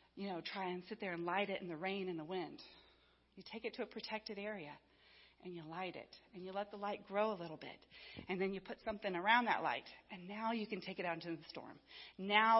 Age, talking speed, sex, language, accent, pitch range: 40-59, 255 wpm, female, English, American, 185-225 Hz